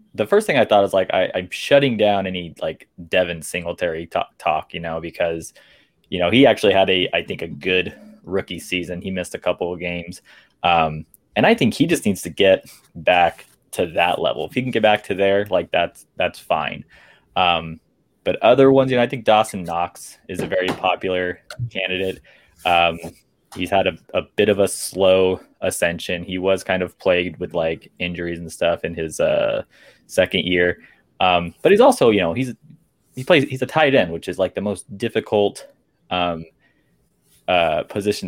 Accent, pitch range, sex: American, 85-110 Hz, male